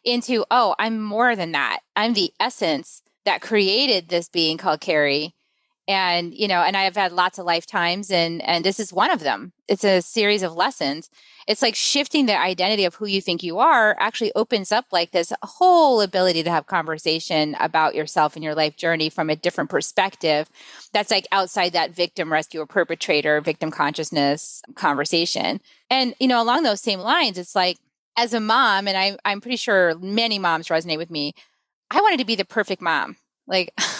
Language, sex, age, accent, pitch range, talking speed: English, female, 30-49, American, 175-225 Hz, 190 wpm